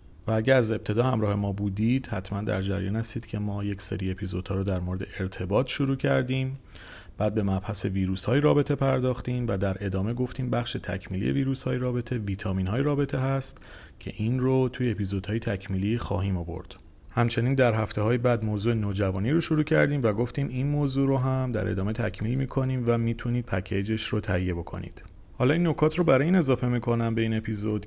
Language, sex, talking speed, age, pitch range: Persian, male, 195 wpm, 40-59, 95-125 Hz